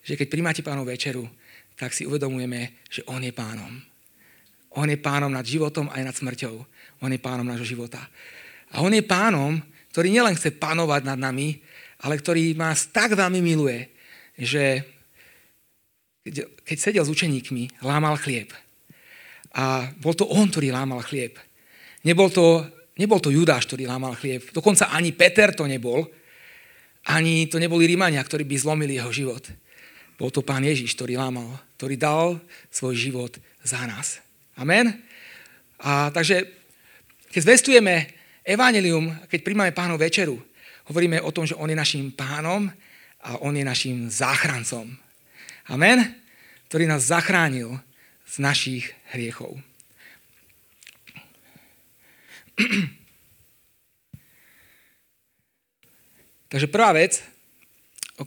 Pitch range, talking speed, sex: 130-170 Hz, 125 wpm, male